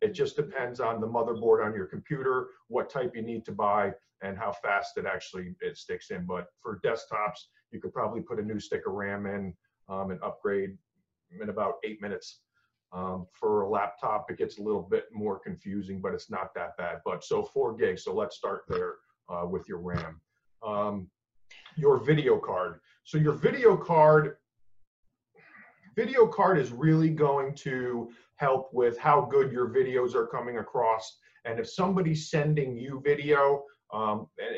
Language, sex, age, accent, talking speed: English, male, 40-59, American, 175 wpm